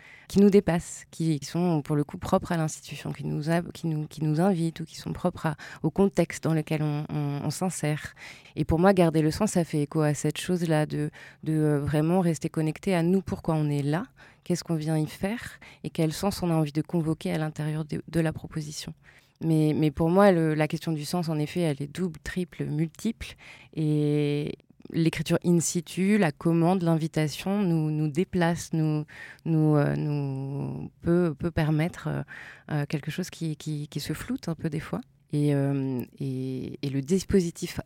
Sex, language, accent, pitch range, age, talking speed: female, French, French, 150-175 Hz, 20-39, 185 wpm